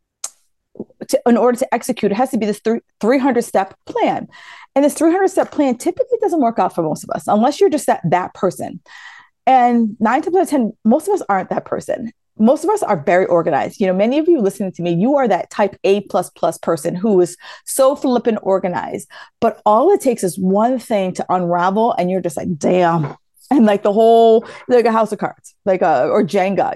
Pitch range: 195-265 Hz